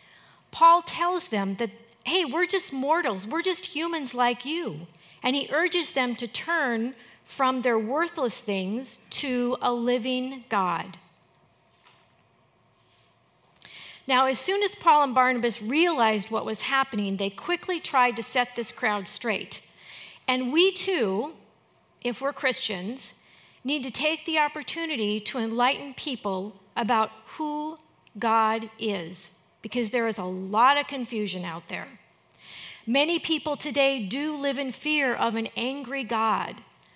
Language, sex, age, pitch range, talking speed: English, female, 40-59, 215-280 Hz, 135 wpm